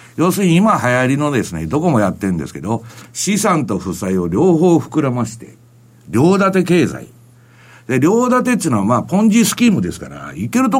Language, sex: Japanese, male